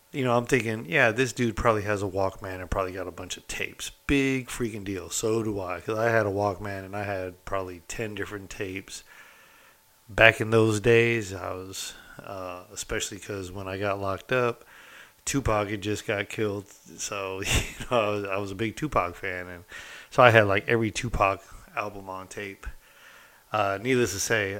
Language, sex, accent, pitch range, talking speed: English, male, American, 95-120 Hz, 195 wpm